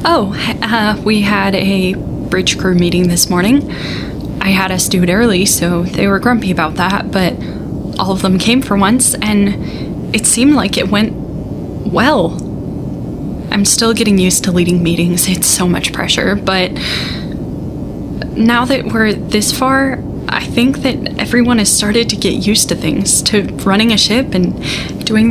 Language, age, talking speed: English, 10-29, 165 wpm